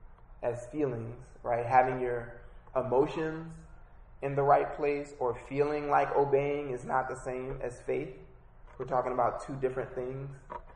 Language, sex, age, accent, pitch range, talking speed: English, male, 20-39, American, 125-145 Hz, 145 wpm